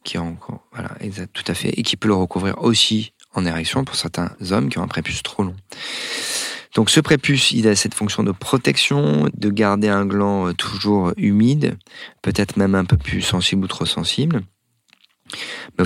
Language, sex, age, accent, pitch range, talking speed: French, male, 30-49, French, 90-110 Hz, 175 wpm